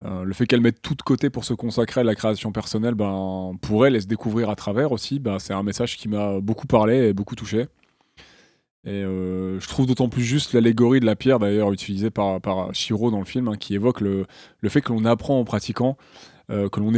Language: French